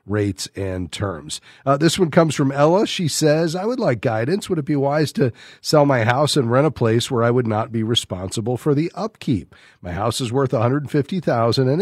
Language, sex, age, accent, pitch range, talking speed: English, male, 40-59, American, 115-145 Hz, 215 wpm